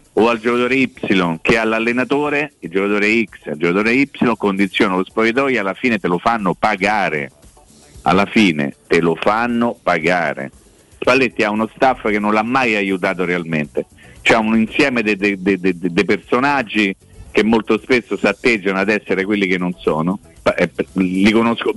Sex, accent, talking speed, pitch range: male, native, 165 wpm, 95-120 Hz